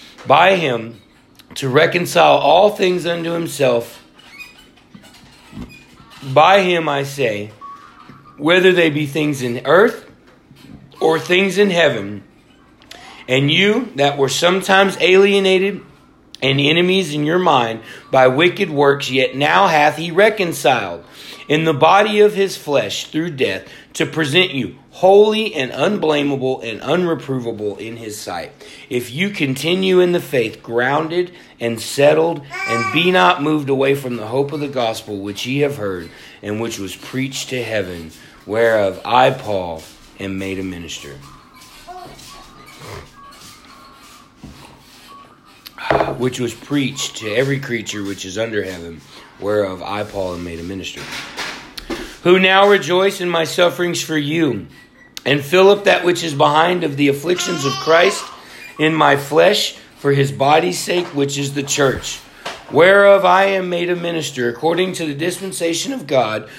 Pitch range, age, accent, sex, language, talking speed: 120-175 Hz, 40-59, American, male, English, 140 wpm